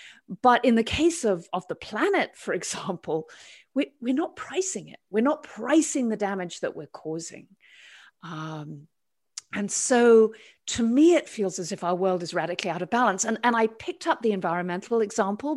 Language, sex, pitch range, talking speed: English, female, 190-270 Hz, 175 wpm